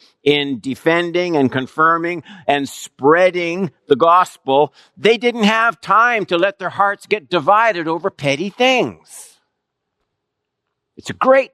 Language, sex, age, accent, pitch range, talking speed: English, male, 60-79, American, 130-195 Hz, 125 wpm